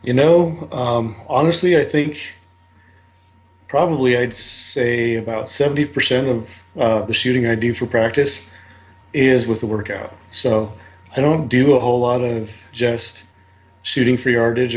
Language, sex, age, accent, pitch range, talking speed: English, male, 30-49, American, 105-125 Hz, 140 wpm